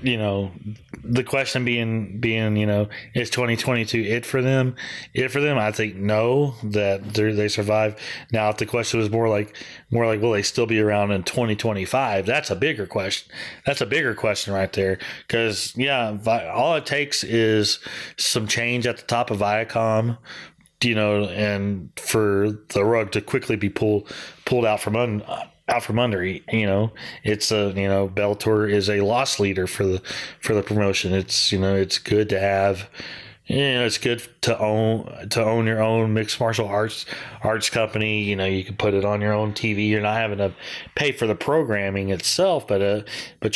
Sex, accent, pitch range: male, American, 100-115 Hz